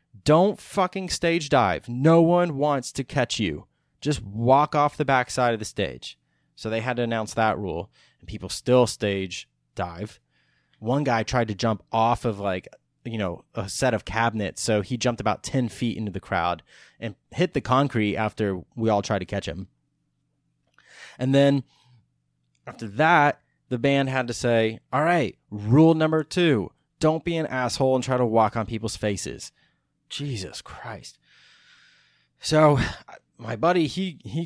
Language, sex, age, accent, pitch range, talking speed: English, male, 20-39, American, 100-130 Hz, 170 wpm